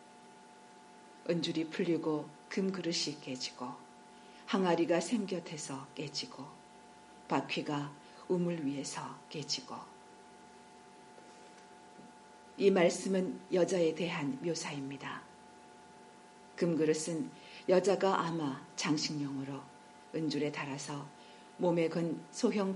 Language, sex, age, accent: Korean, female, 50-69, native